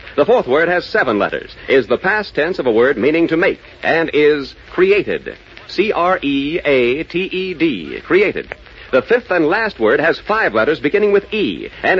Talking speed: 165 wpm